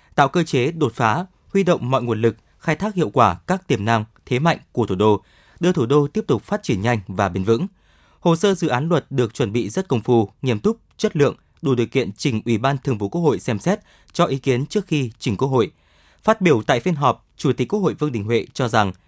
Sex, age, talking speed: male, 20-39, 260 wpm